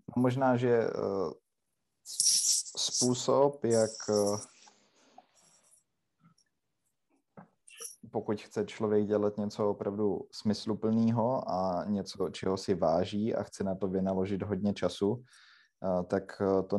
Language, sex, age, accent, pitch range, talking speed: Czech, male, 20-39, native, 95-105 Hz, 90 wpm